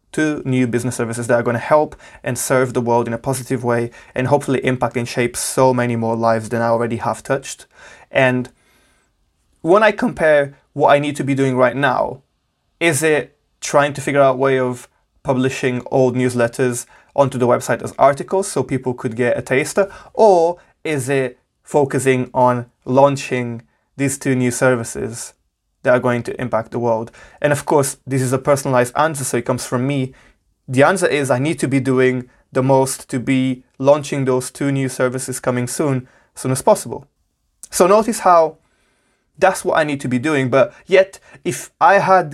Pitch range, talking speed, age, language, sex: 125-145 Hz, 190 wpm, 20-39, English, male